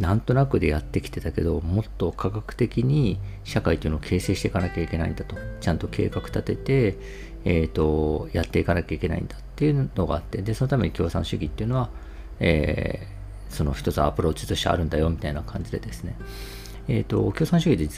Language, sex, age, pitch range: Japanese, male, 40-59, 80-110 Hz